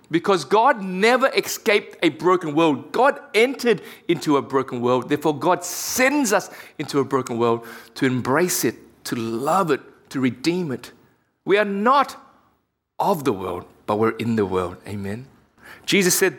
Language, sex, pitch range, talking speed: English, male, 130-195 Hz, 160 wpm